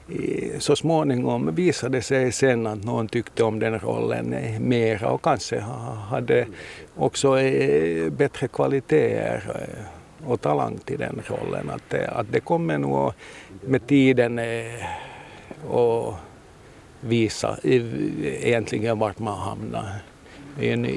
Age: 60-79